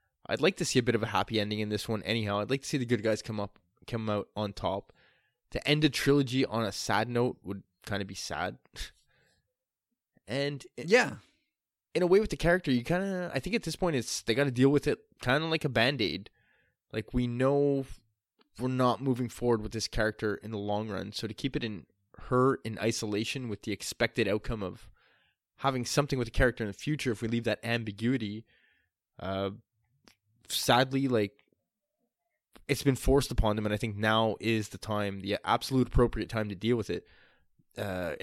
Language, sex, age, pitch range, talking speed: English, male, 20-39, 105-130 Hz, 200 wpm